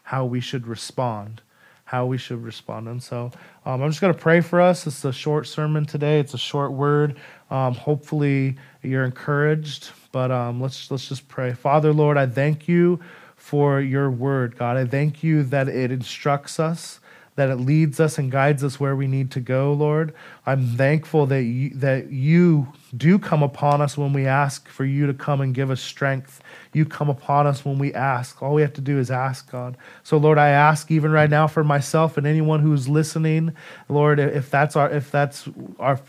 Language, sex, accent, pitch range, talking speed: English, male, American, 130-155 Hz, 205 wpm